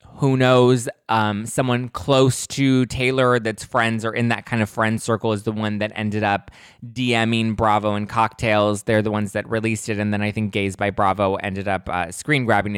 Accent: American